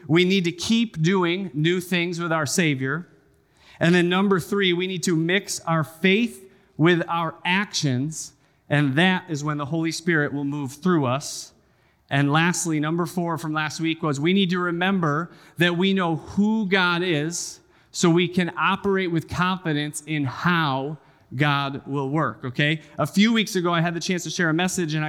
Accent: American